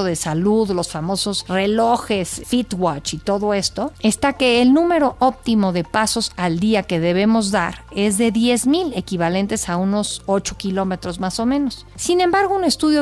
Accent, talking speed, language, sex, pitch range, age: Mexican, 165 wpm, Spanish, female, 190-250 Hz, 50-69